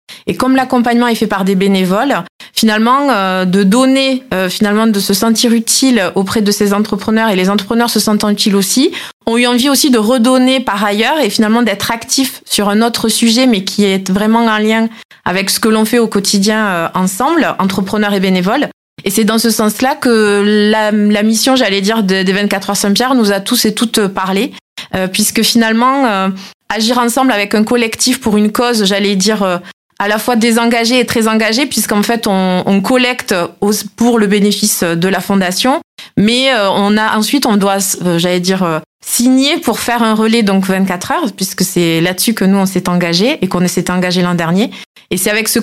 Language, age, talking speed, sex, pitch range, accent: French, 20-39, 200 wpm, female, 195-235 Hz, French